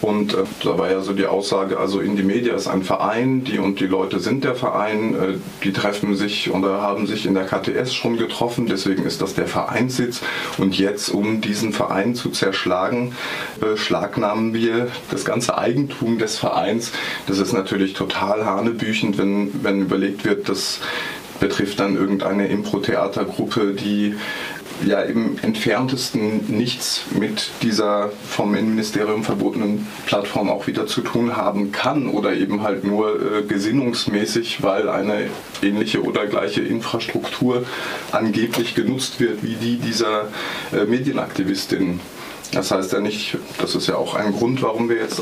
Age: 20-39